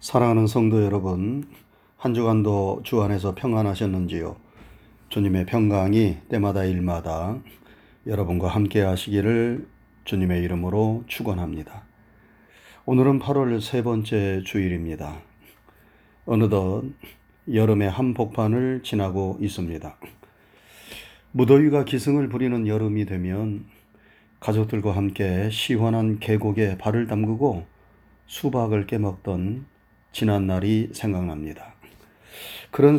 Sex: male